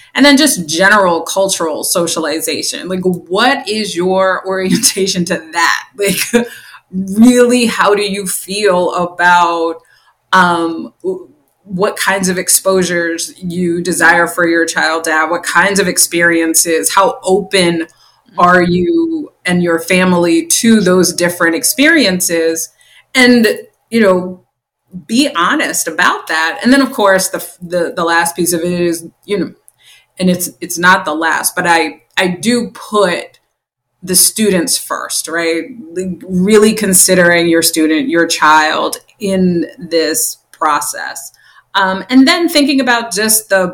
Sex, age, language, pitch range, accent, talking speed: female, 20-39, English, 170-205 Hz, American, 135 wpm